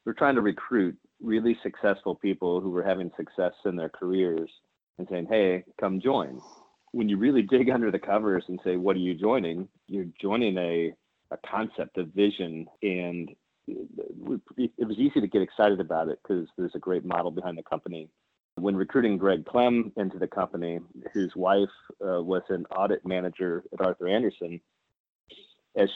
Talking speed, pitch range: 170 wpm, 90-115 Hz